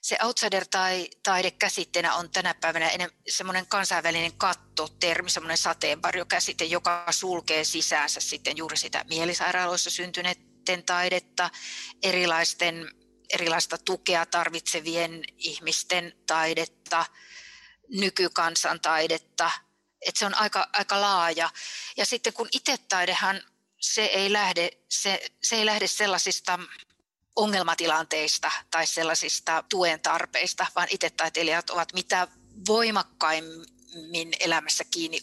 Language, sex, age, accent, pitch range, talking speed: Finnish, female, 30-49, native, 165-195 Hz, 100 wpm